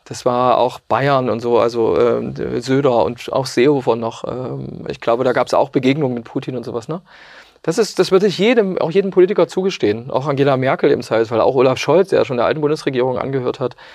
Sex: male